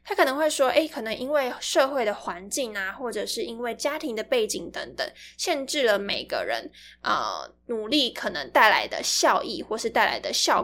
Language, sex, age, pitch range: Chinese, female, 10-29, 220-300 Hz